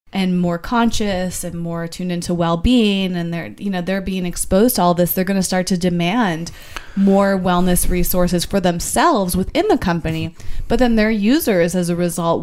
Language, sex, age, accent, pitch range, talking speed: English, female, 20-39, American, 175-195 Hz, 190 wpm